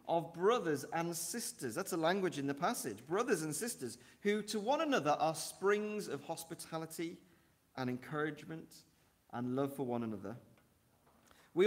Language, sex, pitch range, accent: English, male, 135-185 Hz, British